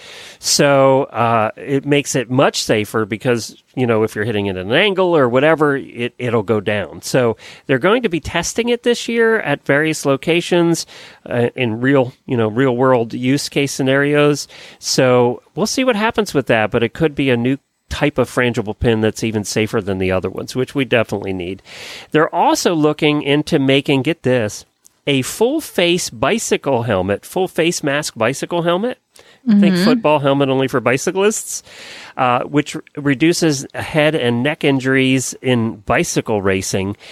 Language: English